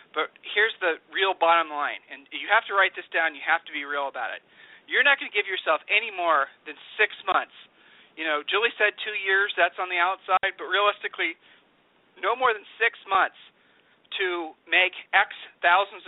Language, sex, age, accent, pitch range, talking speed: English, male, 40-59, American, 160-205 Hz, 195 wpm